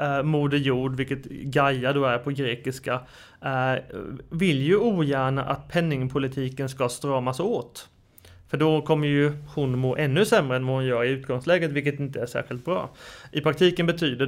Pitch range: 135-155 Hz